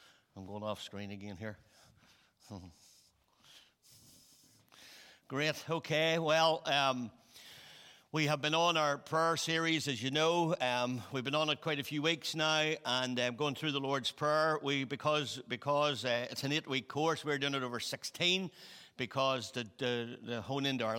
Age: 60-79